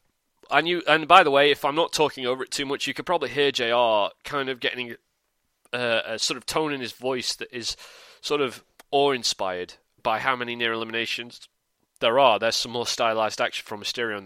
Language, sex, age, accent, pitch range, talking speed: English, male, 30-49, British, 120-155 Hz, 210 wpm